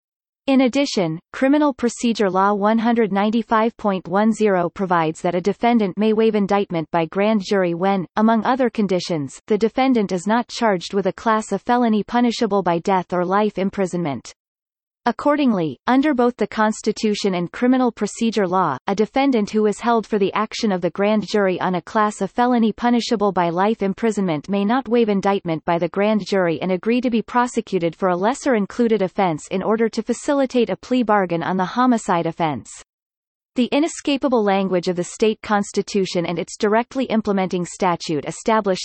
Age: 30-49